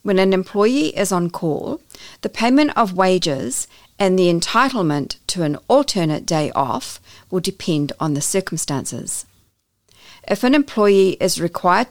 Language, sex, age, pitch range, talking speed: English, female, 50-69, 155-205 Hz, 140 wpm